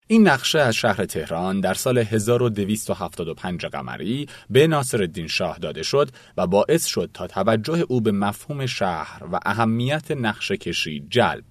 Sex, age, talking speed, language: male, 30-49, 145 wpm, Persian